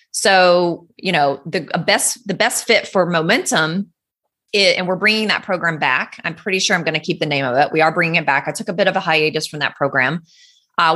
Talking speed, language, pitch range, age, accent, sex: 240 wpm, English, 150-195 Hz, 20-39, American, female